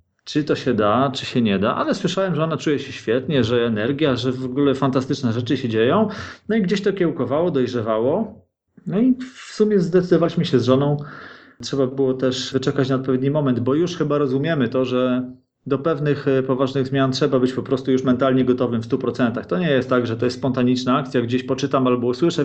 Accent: native